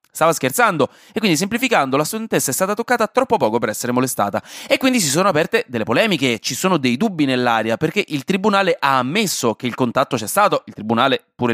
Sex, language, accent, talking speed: male, Italian, native, 210 wpm